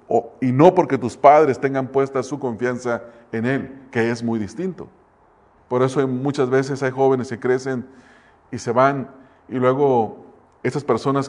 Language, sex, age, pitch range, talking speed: English, male, 40-59, 120-145 Hz, 160 wpm